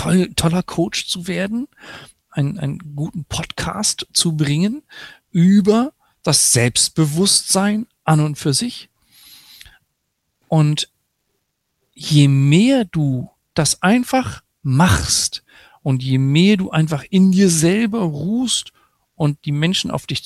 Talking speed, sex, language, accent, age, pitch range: 115 wpm, male, German, German, 50-69, 120-175 Hz